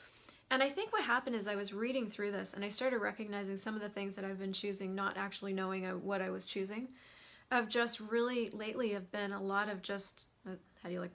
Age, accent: 30-49, American